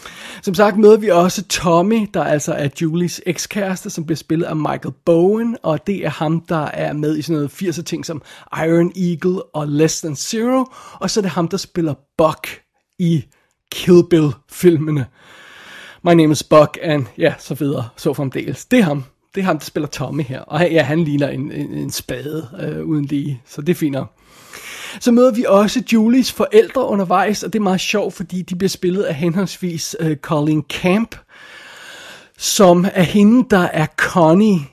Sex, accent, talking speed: male, native, 190 wpm